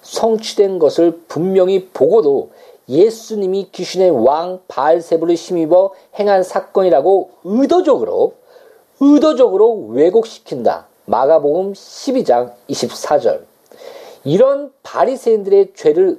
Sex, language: male, Korean